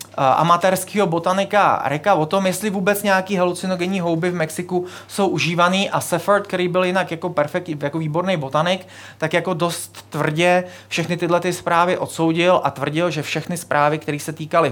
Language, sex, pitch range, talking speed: Czech, male, 135-190 Hz, 170 wpm